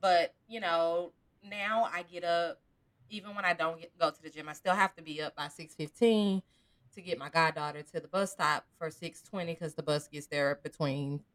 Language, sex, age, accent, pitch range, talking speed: English, female, 20-39, American, 160-245 Hz, 210 wpm